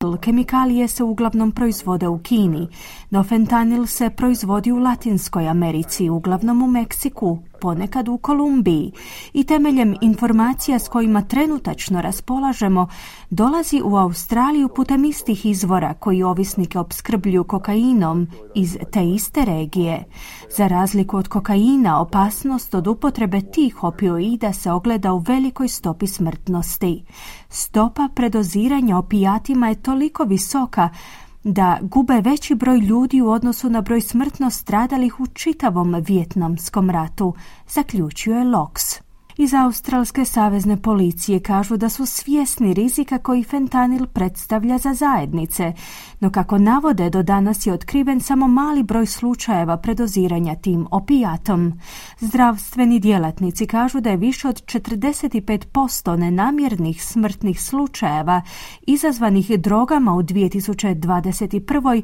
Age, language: 30-49, Croatian